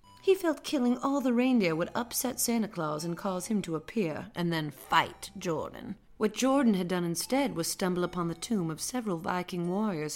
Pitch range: 170-235 Hz